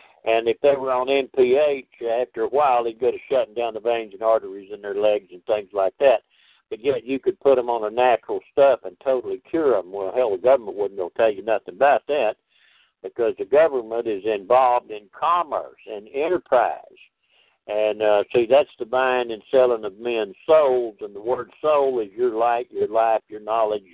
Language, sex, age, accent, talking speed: English, male, 60-79, American, 210 wpm